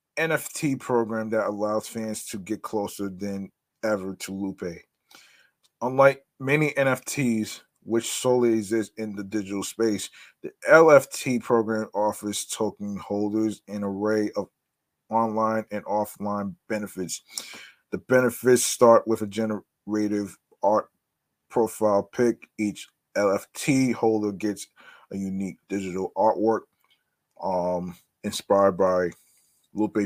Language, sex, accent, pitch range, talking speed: English, male, American, 100-115 Hz, 110 wpm